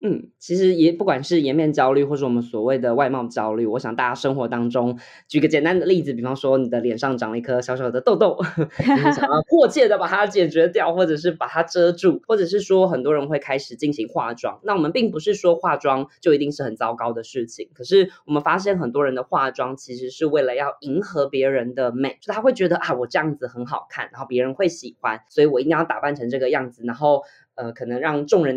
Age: 20-39